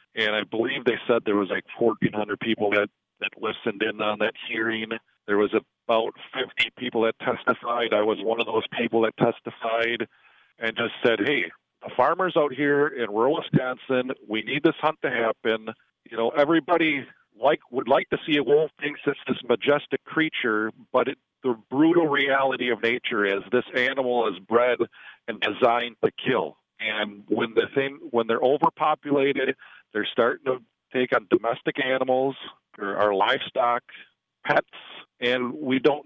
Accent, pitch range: American, 110-130 Hz